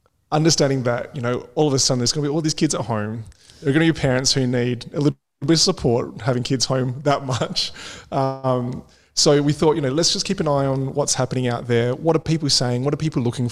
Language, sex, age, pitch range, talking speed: English, male, 20-39, 120-145 Hz, 260 wpm